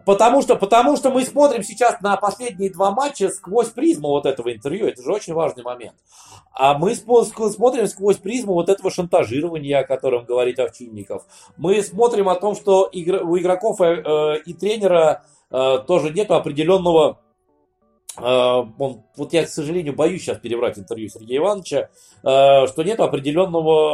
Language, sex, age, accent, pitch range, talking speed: Russian, male, 20-39, native, 140-205 Hz, 165 wpm